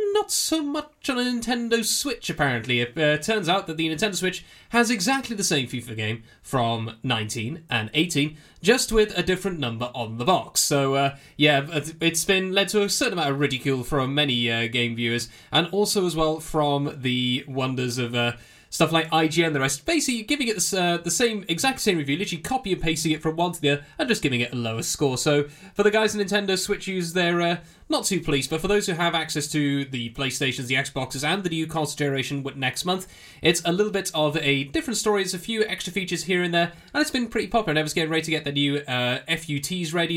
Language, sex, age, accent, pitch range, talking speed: English, male, 20-39, British, 135-200 Hz, 230 wpm